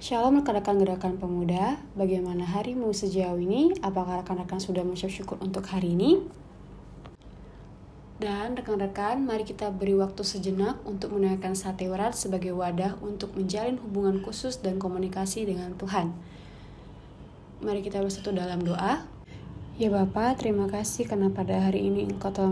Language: Indonesian